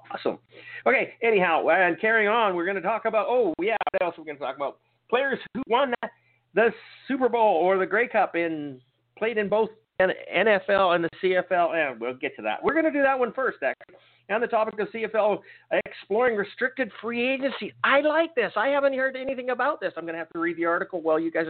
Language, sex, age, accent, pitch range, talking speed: English, male, 50-69, American, 195-250 Hz, 225 wpm